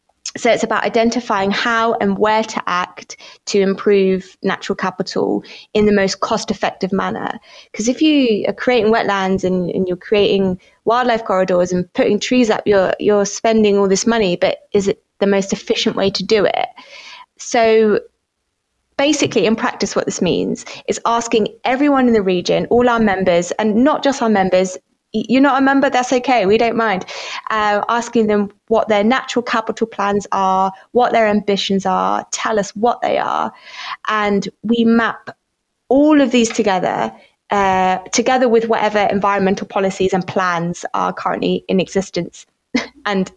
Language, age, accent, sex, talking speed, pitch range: English, 20-39, British, female, 165 wpm, 190-230 Hz